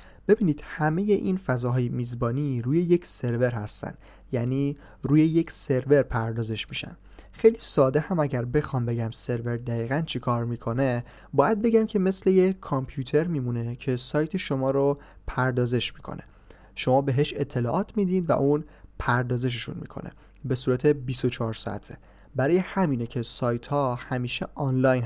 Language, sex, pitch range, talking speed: Persian, male, 120-150 Hz, 140 wpm